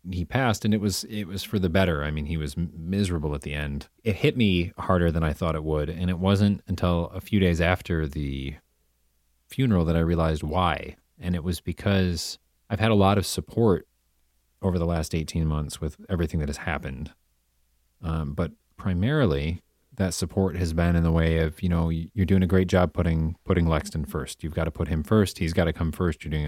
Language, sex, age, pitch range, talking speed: English, male, 30-49, 75-95 Hz, 220 wpm